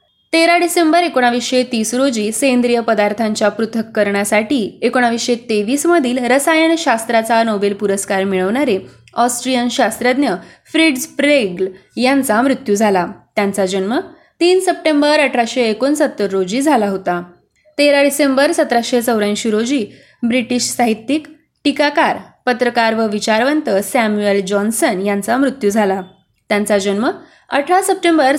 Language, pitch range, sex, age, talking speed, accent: Marathi, 210-290 Hz, female, 20-39, 105 wpm, native